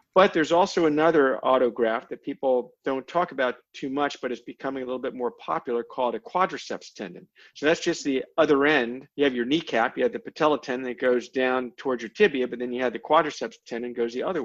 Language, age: English, 50-69